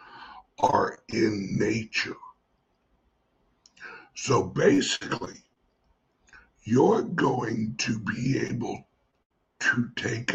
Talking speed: 70 wpm